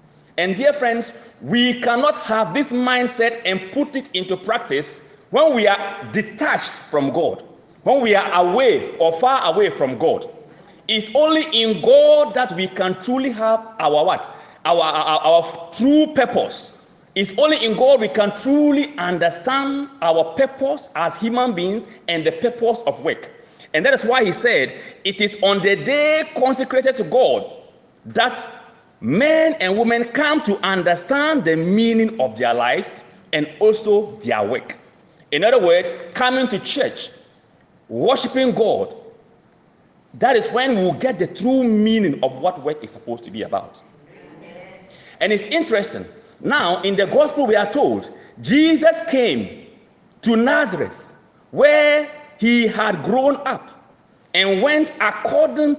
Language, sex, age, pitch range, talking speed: English, male, 40-59, 190-285 Hz, 150 wpm